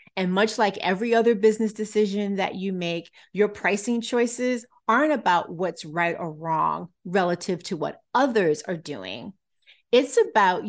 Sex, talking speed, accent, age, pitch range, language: female, 150 wpm, American, 30-49, 180-220 Hz, English